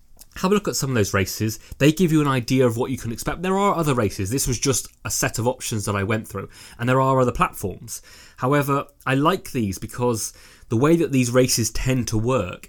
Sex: male